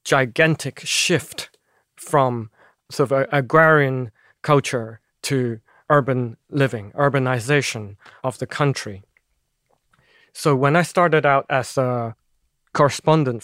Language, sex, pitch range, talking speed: English, male, 125-155 Hz, 100 wpm